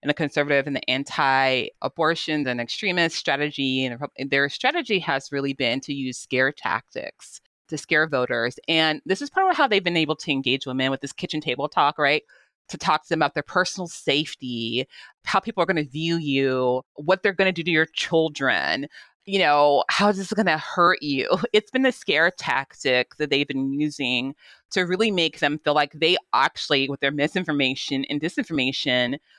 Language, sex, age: English, female, 30-49